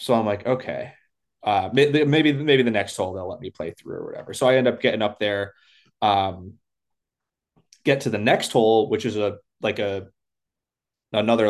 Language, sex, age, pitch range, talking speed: English, male, 20-39, 100-130 Hz, 190 wpm